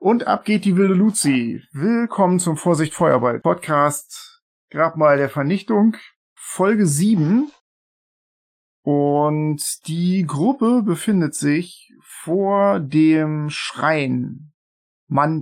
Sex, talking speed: male, 95 wpm